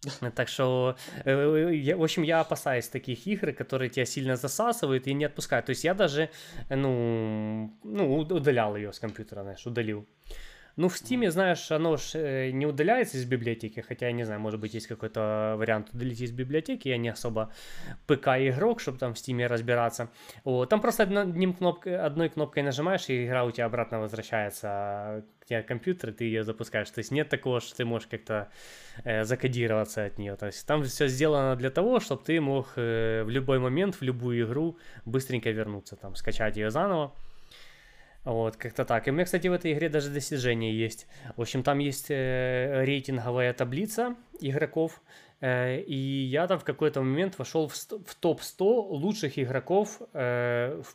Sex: male